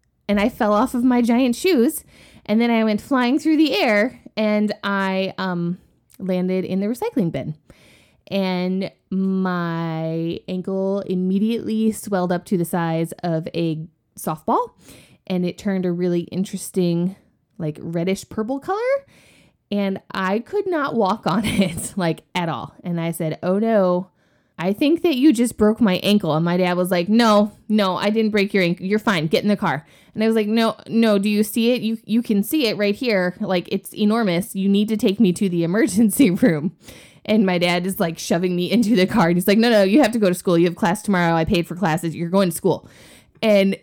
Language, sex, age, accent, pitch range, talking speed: English, female, 20-39, American, 175-220 Hz, 205 wpm